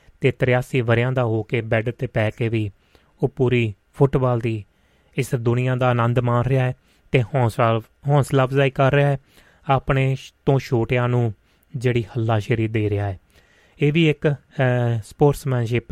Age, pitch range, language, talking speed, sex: 30-49, 115-135 Hz, Punjabi, 155 wpm, male